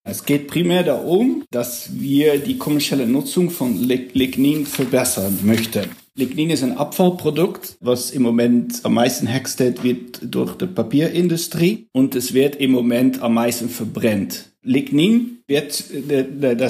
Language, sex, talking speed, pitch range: German, male, 135 wpm, 125-155 Hz